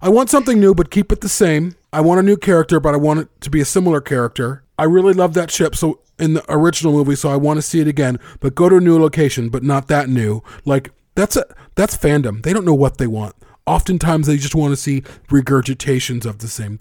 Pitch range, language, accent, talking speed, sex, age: 115-150 Hz, English, American, 255 wpm, male, 30-49